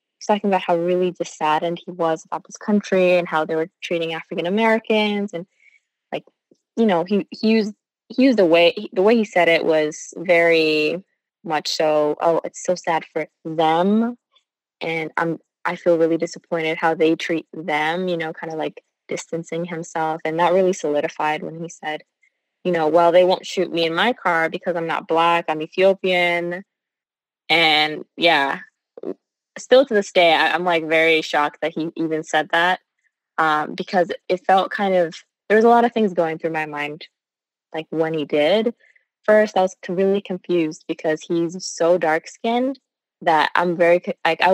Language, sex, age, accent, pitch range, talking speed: English, female, 20-39, American, 160-195 Hz, 180 wpm